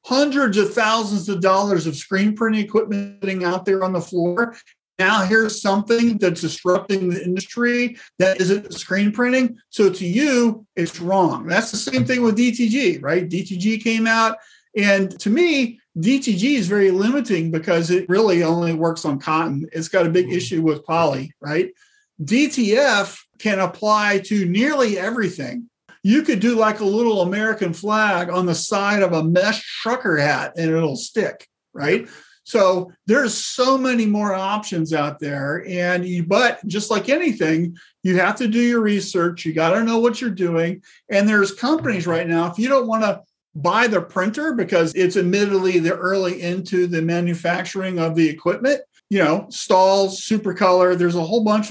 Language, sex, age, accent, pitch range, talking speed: English, male, 50-69, American, 175-225 Hz, 175 wpm